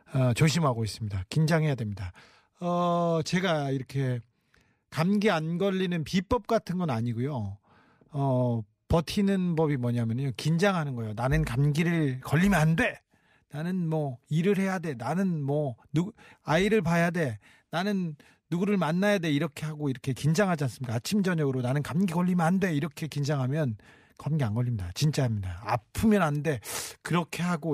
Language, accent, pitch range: Korean, native, 125-180 Hz